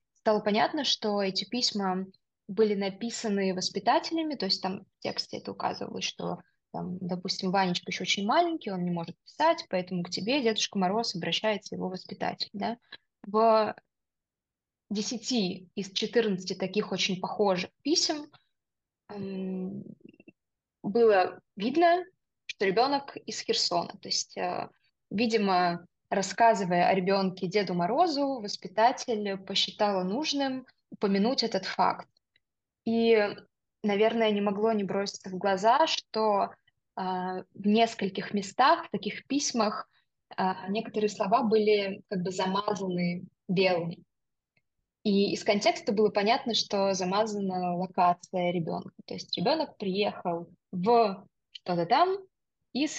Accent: native